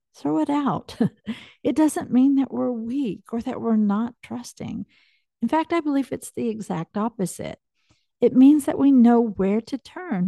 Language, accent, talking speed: English, American, 175 wpm